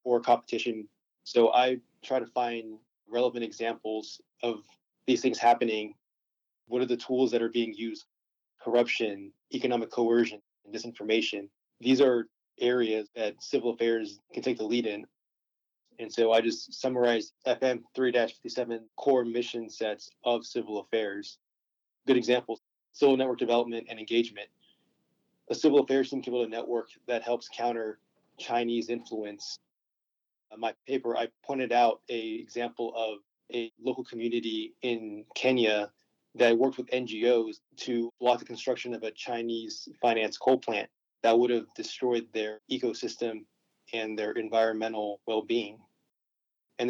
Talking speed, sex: 140 wpm, male